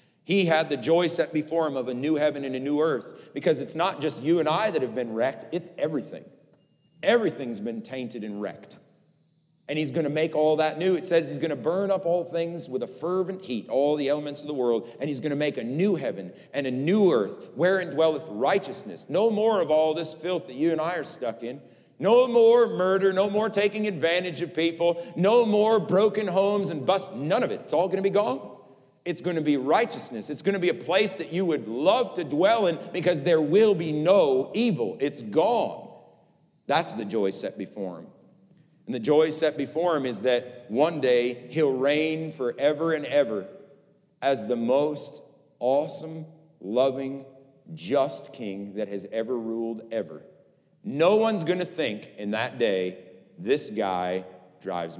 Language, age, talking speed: English, 40-59, 195 wpm